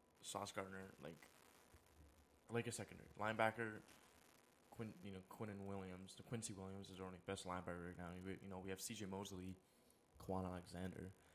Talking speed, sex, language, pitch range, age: 170 wpm, male, English, 90-105 Hz, 20-39